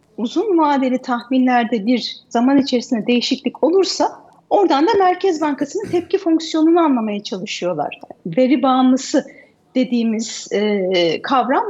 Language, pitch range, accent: Turkish, 250-345 Hz, native